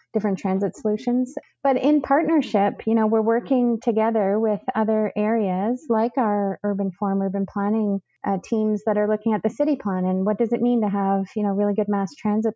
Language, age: English, 30-49